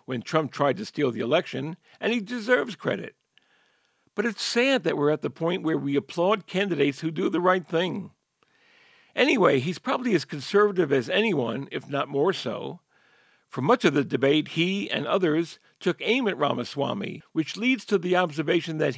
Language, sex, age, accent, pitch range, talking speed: English, male, 60-79, American, 145-200 Hz, 180 wpm